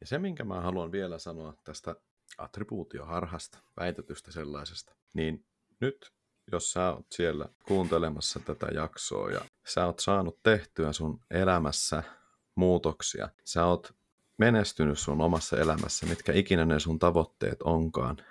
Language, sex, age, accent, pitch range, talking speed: Finnish, male, 30-49, native, 80-100 Hz, 130 wpm